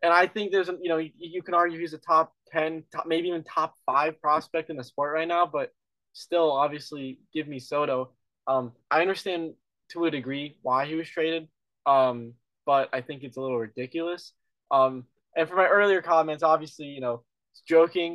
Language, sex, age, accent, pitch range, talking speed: English, male, 20-39, American, 130-165 Hz, 195 wpm